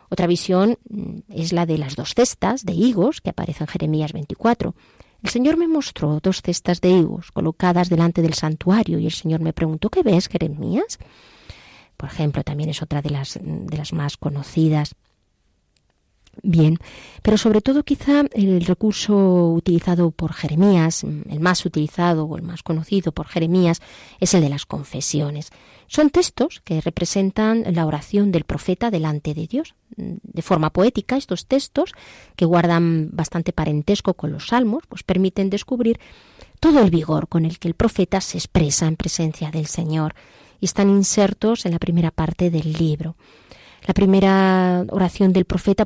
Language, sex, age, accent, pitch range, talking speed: Spanish, female, 30-49, Spanish, 160-200 Hz, 160 wpm